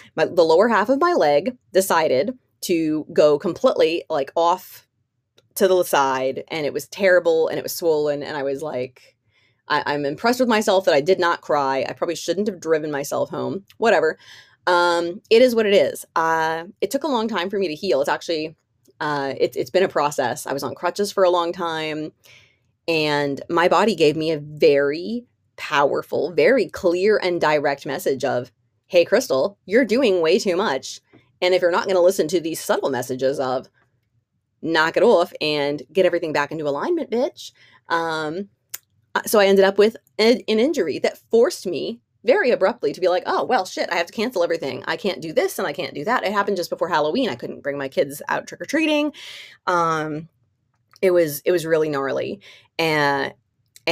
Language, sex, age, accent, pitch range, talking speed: English, female, 20-39, American, 140-205 Hz, 190 wpm